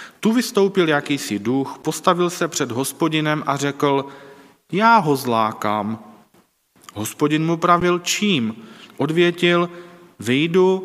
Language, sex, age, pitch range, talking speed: Czech, male, 40-59, 120-170 Hz, 105 wpm